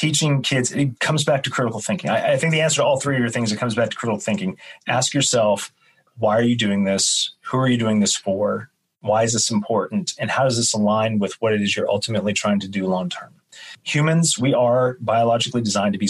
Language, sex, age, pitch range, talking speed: English, male, 30-49, 105-125 Hz, 240 wpm